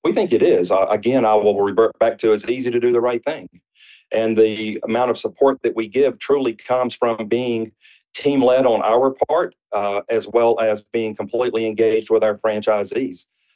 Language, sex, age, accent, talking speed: English, male, 40-59, American, 200 wpm